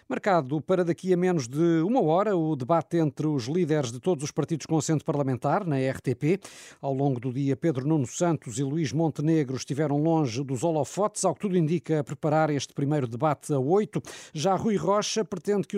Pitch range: 145-175 Hz